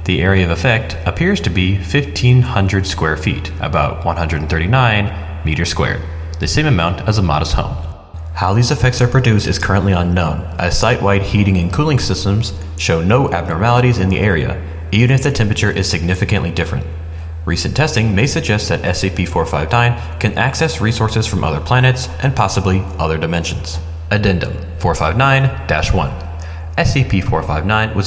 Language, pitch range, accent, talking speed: English, 80-110 Hz, American, 145 wpm